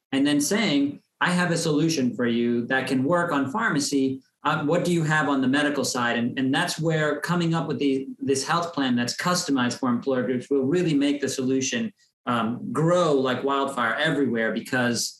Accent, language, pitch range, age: American, English, 125-155 Hz, 40-59